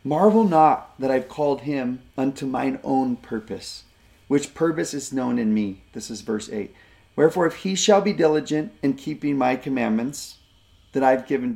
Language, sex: English, male